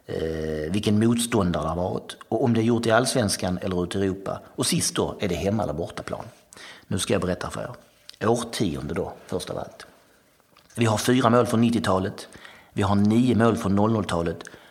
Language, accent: Swedish, native